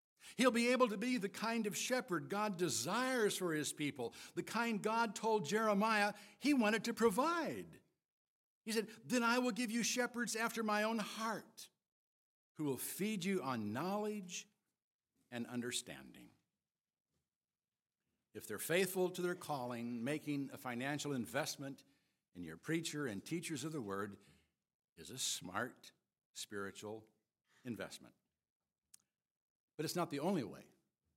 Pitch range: 145-220 Hz